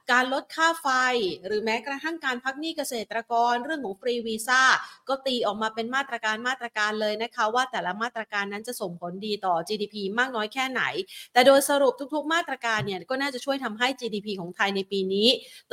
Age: 30-49